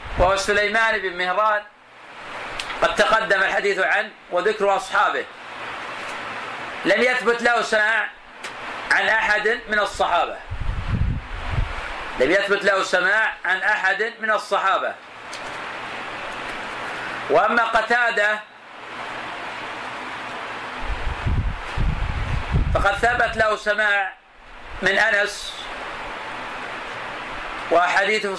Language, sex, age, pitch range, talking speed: Arabic, male, 40-59, 190-220 Hz, 75 wpm